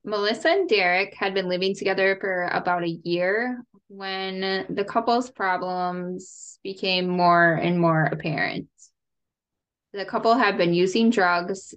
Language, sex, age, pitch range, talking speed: English, female, 10-29, 170-200 Hz, 135 wpm